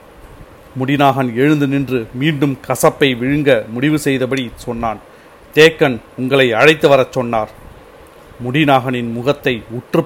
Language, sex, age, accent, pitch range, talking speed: Tamil, male, 40-59, native, 125-150 Hz, 100 wpm